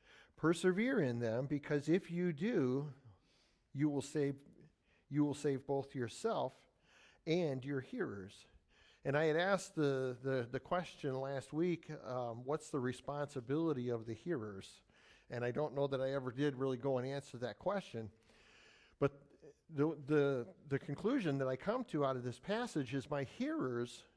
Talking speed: 160 wpm